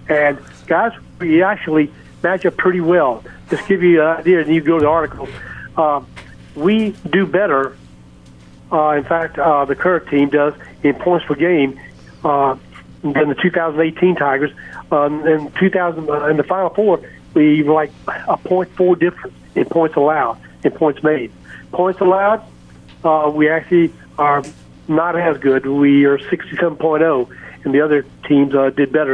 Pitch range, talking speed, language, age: 140-180 Hz, 165 wpm, English, 60-79